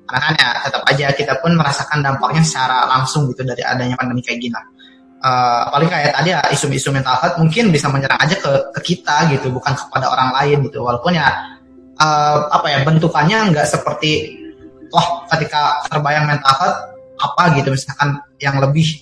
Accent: native